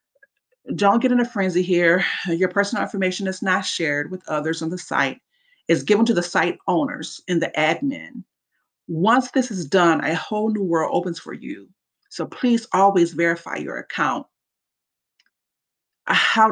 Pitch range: 165-200 Hz